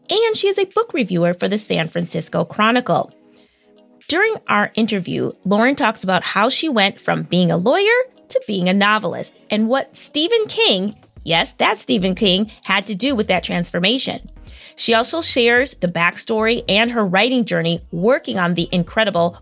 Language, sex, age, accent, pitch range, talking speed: English, female, 30-49, American, 180-250 Hz, 170 wpm